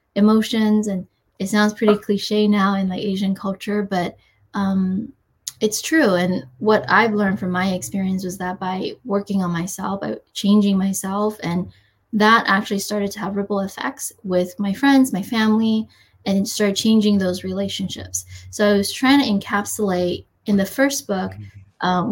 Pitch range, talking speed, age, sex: 190-215 Hz, 165 wpm, 20-39, female